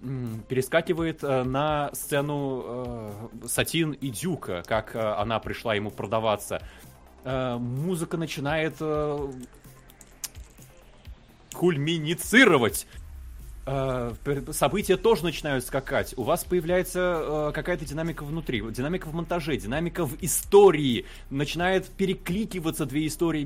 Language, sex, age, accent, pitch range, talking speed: Russian, male, 20-39, native, 135-185 Hz, 100 wpm